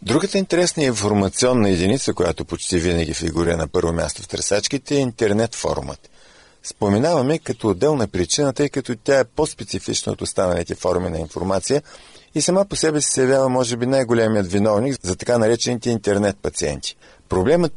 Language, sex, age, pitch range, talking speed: Bulgarian, male, 50-69, 95-140 Hz, 160 wpm